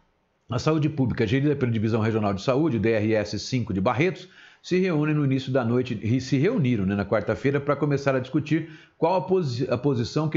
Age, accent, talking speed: 50-69, Brazilian, 190 wpm